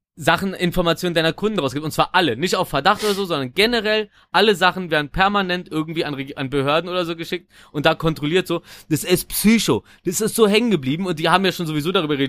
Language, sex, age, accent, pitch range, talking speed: German, male, 20-39, German, 155-195 Hz, 230 wpm